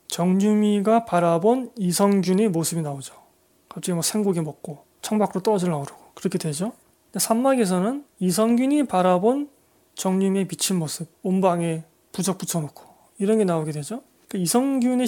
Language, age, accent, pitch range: Korean, 20-39, native, 180-230 Hz